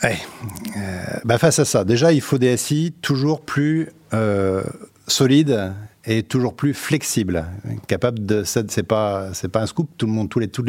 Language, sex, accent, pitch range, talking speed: French, male, French, 105-130 Hz, 180 wpm